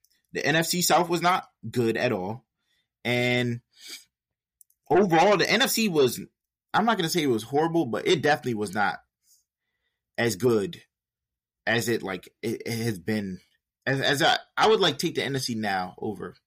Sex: male